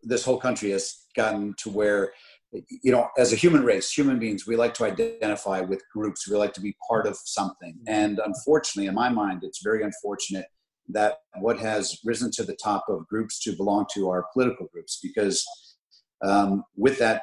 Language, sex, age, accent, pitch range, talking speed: English, male, 50-69, American, 100-120 Hz, 190 wpm